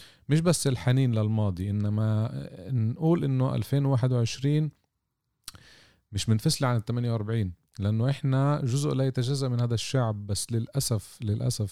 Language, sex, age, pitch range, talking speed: Arabic, male, 40-59, 105-130 Hz, 125 wpm